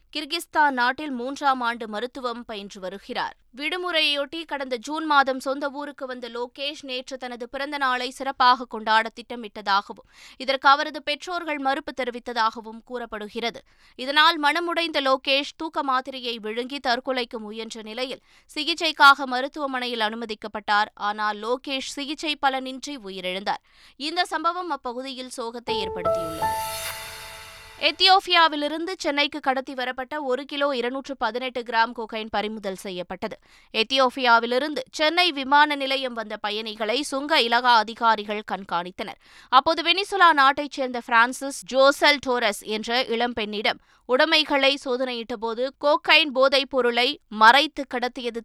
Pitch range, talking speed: 230-290 Hz, 105 wpm